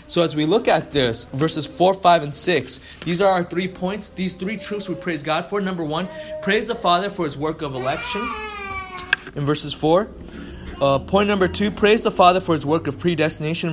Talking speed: 205 wpm